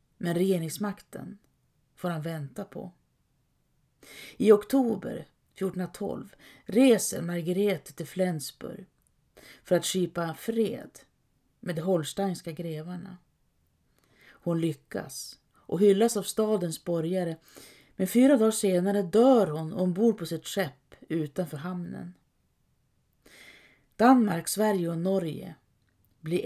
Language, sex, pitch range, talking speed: Swedish, female, 165-200 Hz, 100 wpm